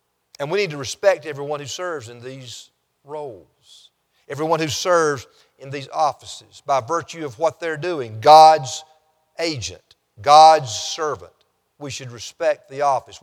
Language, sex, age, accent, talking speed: English, male, 50-69, American, 145 wpm